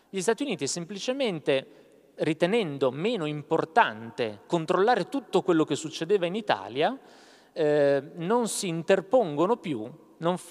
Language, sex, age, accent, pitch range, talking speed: Italian, male, 30-49, native, 140-195 Hz, 115 wpm